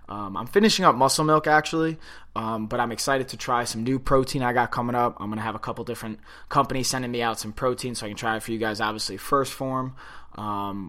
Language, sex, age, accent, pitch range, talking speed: English, male, 20-39, American, 110-130 Hz, 250 wpm